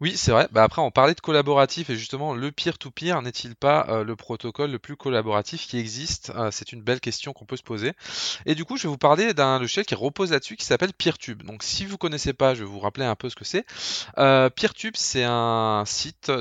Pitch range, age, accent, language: 110-150 Hz, 20-39, French, French